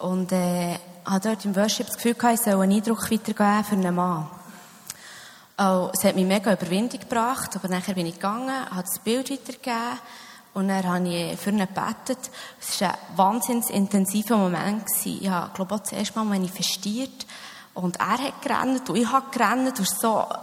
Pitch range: 195-235 Hz